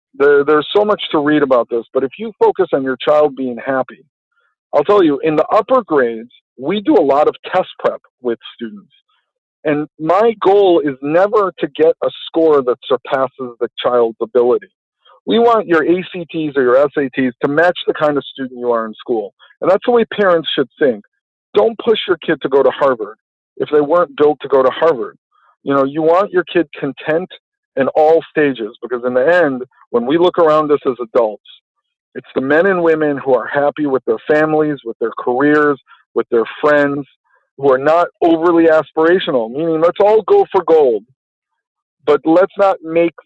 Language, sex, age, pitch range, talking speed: English, male, 50-69, 135-180 Hz, 195 wpm